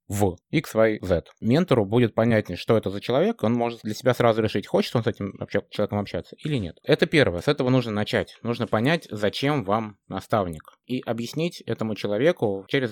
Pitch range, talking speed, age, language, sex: 100-125 Hz, 190 wpm, 20-39, Russian, male